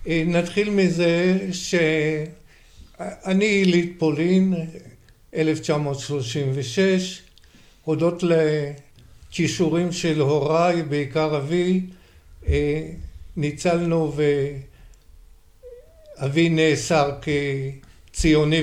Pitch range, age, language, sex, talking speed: 140-165 Hz, 60-79, Hebrew, male, 50 wpm